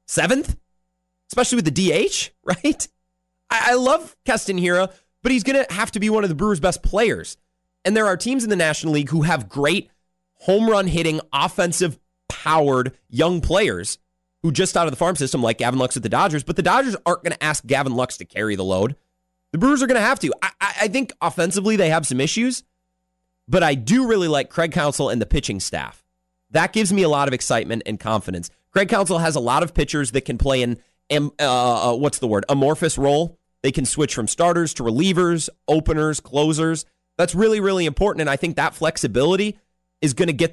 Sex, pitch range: male, 130-185 Hz